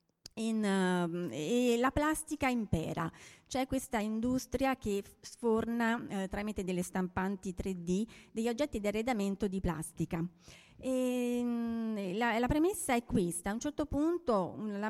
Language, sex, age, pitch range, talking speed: Italian, female, 30-49, 180-235 Hz, 120 wpm